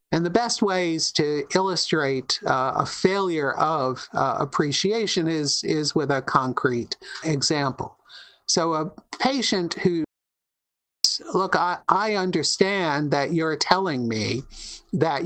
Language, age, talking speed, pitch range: English, 50-69, 120 wpm, 145-190 Hz